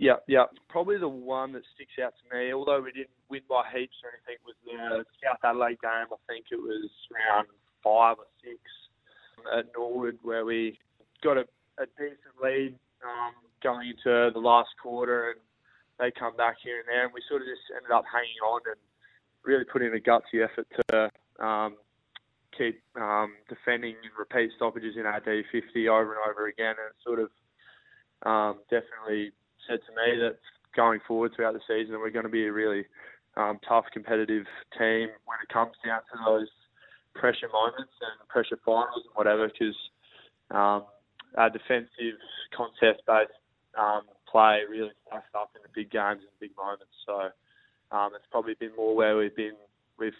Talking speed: 180 wpm